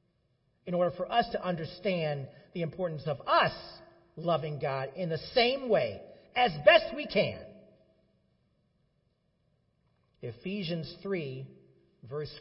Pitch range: 155-210 Hz